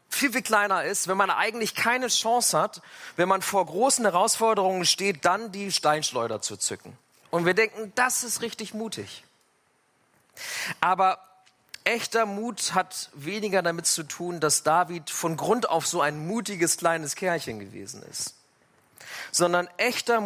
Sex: male